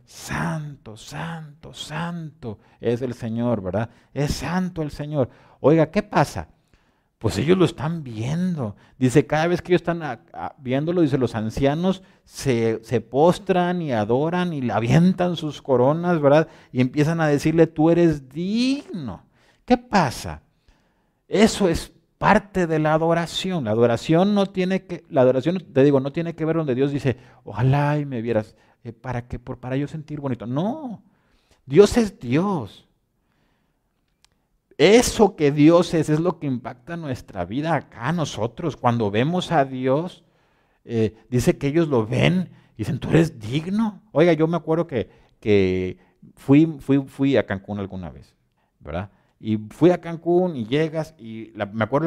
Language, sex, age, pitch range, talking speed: Spanish, male, 40-59, 120-170 Hz, 160 wpm